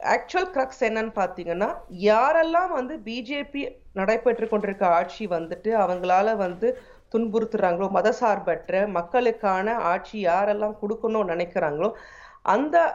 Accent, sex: native, female